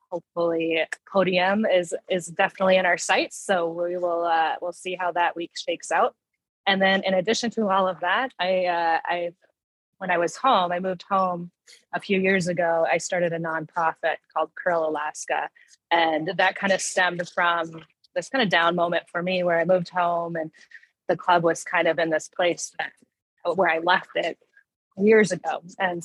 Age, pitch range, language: 20-39, 165-185 Hz, English